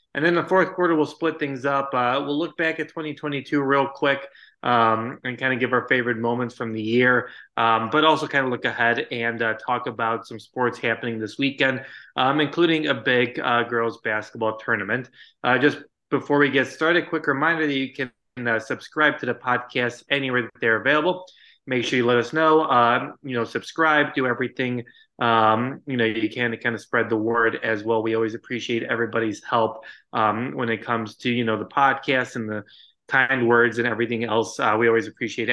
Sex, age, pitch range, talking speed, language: male, 20-39, 115-145 Hz, 205 wpm, English